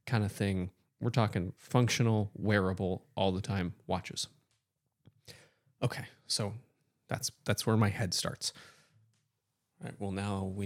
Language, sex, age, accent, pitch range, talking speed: English, male, 20-39, American, 100-125 Hz, 135 wpm